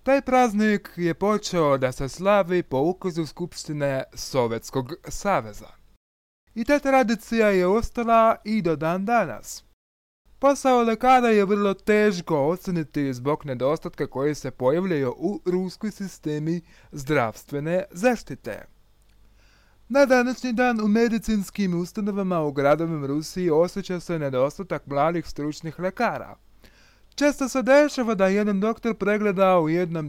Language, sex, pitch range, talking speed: Russian, male, 150-225 Hz, 120 wpm